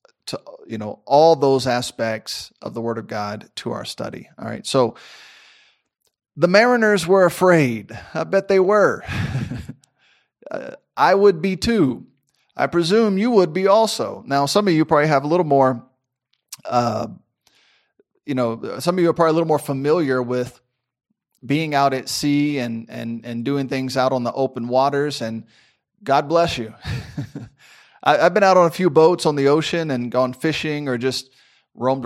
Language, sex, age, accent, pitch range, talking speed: English, male, 30-49, American, 125-165 Hz, 170 wpm